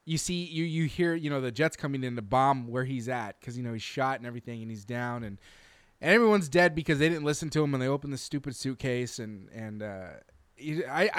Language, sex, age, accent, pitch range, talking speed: English, male, 20-39, American, 130-170 Hz, 240 wpm